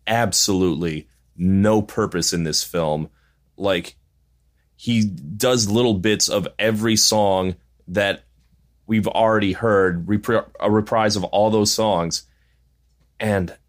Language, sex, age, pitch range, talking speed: English, male, 30-49, 75-105 Hz, 110 wpm